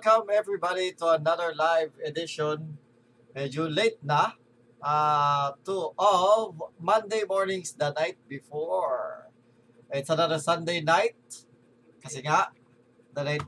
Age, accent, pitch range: 20-39, native, 140-210 Hz